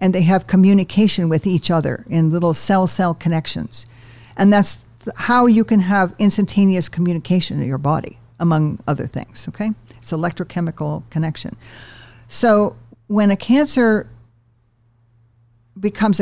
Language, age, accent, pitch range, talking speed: English, 50-69, American, 125-190 Hz, 125 wpm